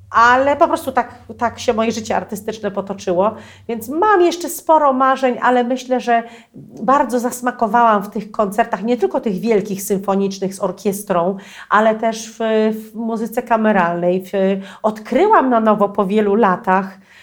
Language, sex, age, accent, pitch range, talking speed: Polish, female, 40-59, native, 195-240 Hz, 145 wpm